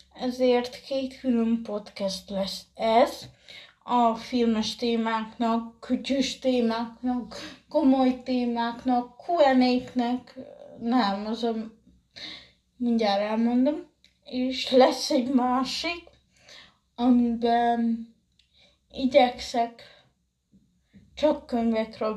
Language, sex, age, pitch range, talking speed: Hungarian, female, 20-39, 230-260 Hz, 75 wpm